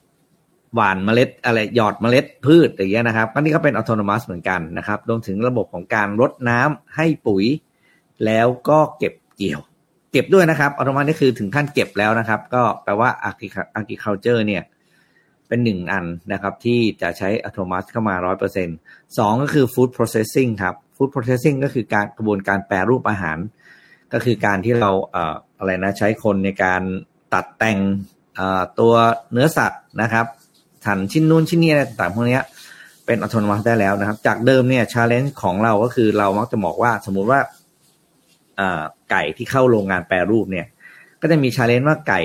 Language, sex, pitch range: Thai, male, 100-130 Hz